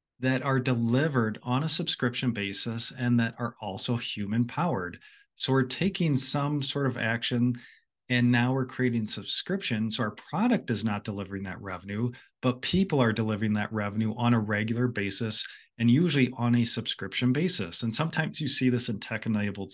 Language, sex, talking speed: English, male, 170 wpm